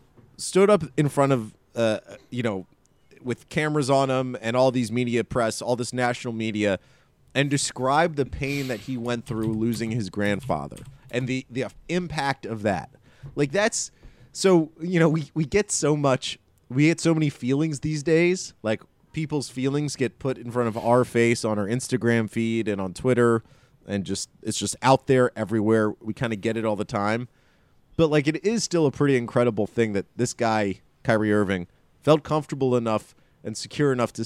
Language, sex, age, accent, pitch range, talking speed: English, male, 30-49, American, 110-145 Hz, 190 wpm